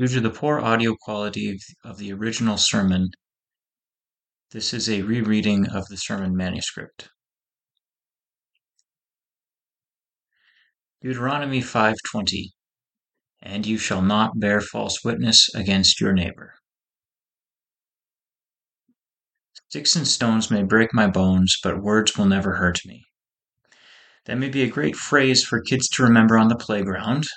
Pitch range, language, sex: 105-120 Hz, English, male